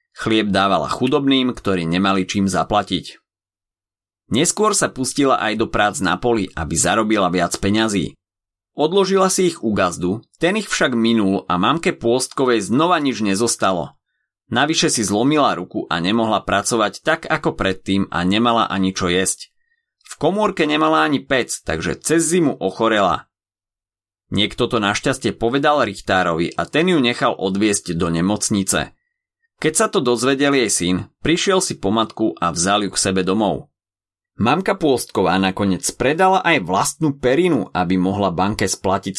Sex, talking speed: male, 150 wpm